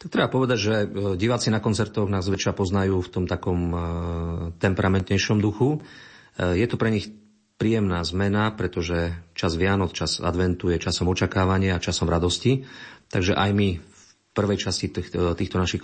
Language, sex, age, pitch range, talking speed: Slovak, male, 40-59, 85-100 Hz, 155 wpm